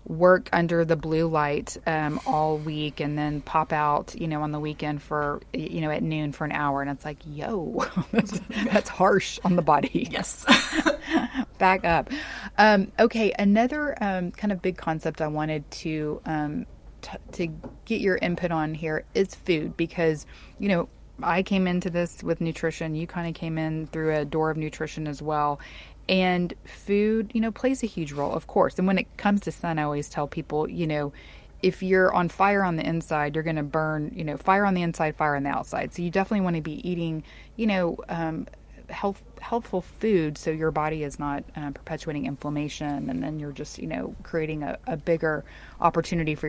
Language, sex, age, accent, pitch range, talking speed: English, female, 30-49, American, 150-185 Hz, 195 wpm